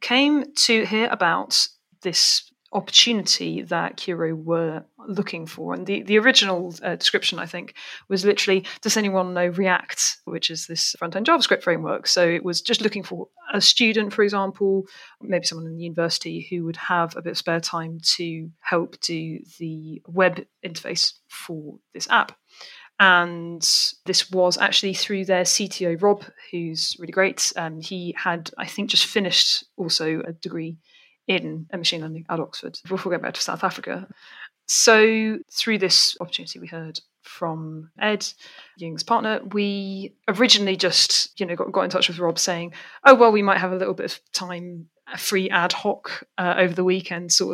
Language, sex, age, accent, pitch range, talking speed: English, female, 30-49, British, 170-205 Hz, 170 wpm